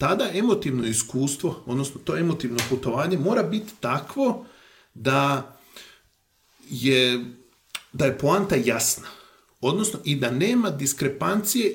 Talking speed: 105 wpm